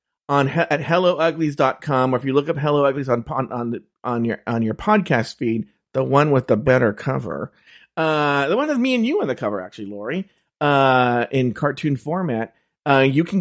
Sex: male